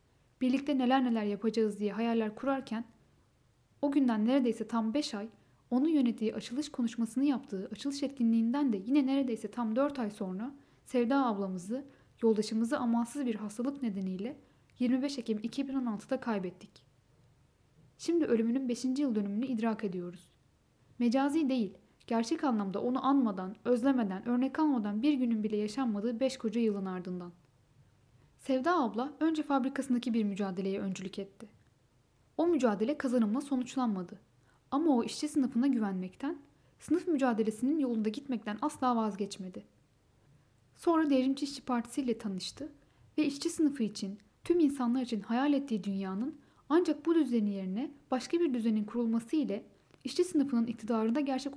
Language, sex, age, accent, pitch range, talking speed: Turkish, female, 10-29, native, 205-270 Hz, 130 wpm